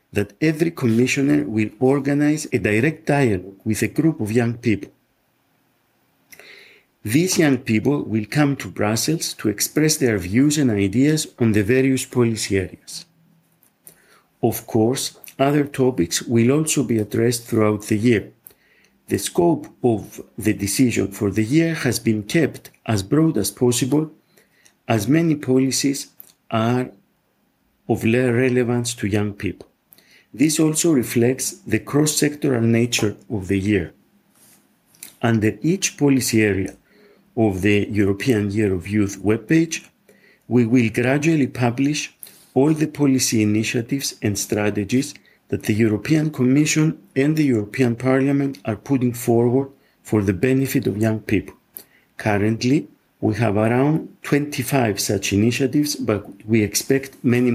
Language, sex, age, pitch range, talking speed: English, male, 50-69, 110-140 Hz, 130 wpm